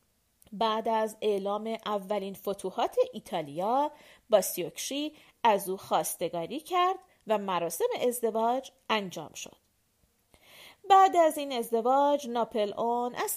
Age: 40-59